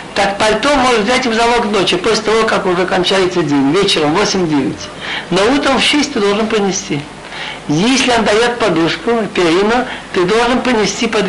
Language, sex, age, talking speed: Russian, male, 60-79, 165 wpm